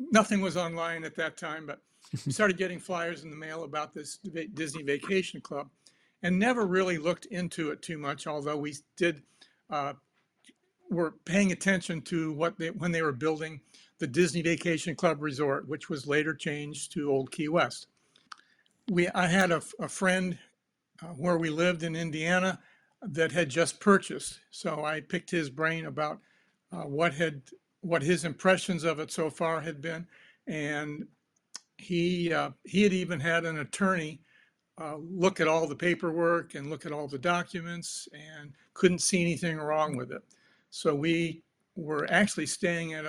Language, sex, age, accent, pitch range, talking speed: English, male, 60-79, American, 155-180 Hz, 170 wpm